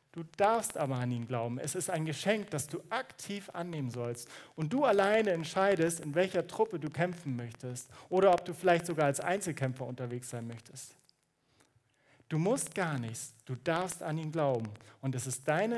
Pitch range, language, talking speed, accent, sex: 130-170 Hz, German, 185 wpm, German, male